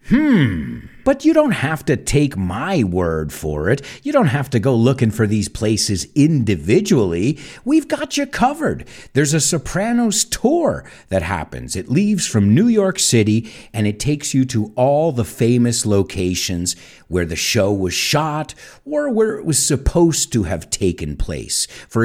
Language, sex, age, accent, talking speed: English, male, 50-69, American, 165 wpm